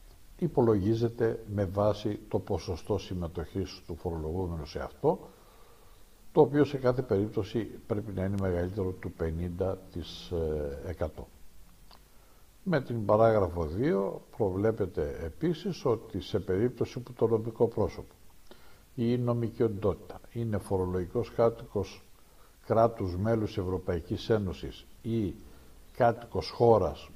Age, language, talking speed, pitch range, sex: 60-79, Greek, 105 wpm, 85-110 Hz, male